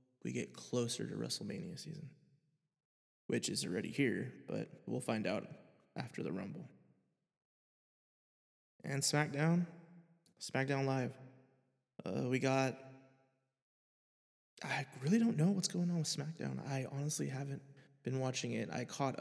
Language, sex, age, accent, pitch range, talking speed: English, male, 20-39, American, 125-140 Hz, 130 wpm